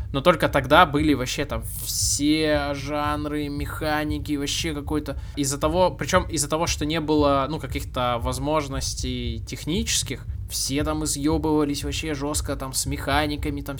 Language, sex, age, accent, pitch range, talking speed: Russian, male, 20-39, native, 120-150 Hz, 140 wpm